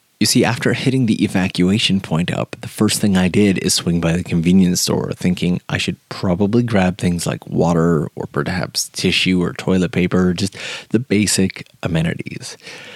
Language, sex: English, male